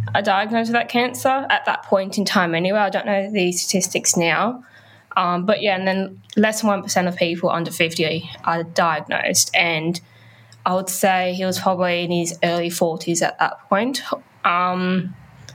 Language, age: English, 10-29